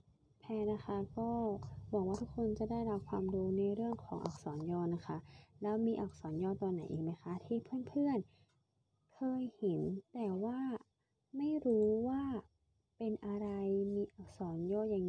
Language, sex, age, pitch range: Thai, female, 20-39, 170-215 Hz